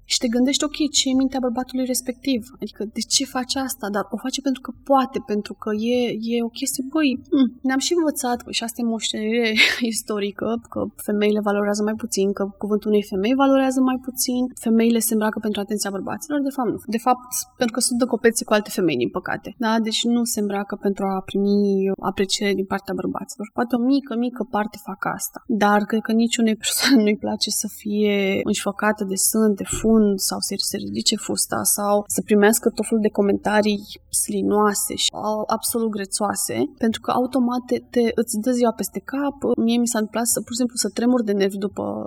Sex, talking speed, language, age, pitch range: female, 205 wpm, Romanian, 20-39, 210-255 Hz